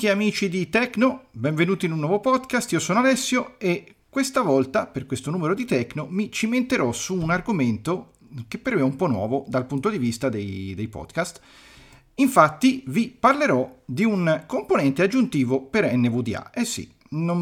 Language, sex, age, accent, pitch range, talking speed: Italian, male, 40-59, native, 120-180 Hz, 175 wpm